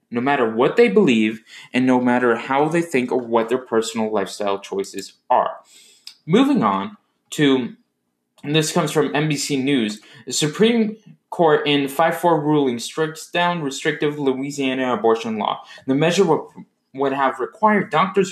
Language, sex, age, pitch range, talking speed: English, male, 20-39, 120-165 Hz, 150 wpm